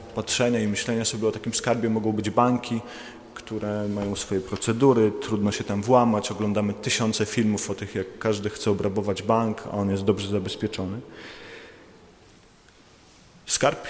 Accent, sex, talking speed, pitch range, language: native, male, 145 wpm, 110-135 Hz, Polish